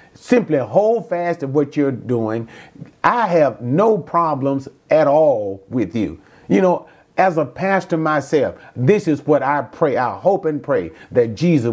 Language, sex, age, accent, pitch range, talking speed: English, male, 40-59, American, 115-155 Hz, 165 wpm